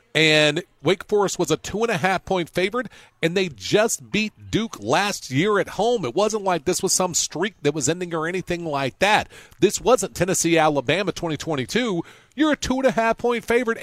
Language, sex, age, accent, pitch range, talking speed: English, male, 40-59, American, 125-175 Hz, 165 wpm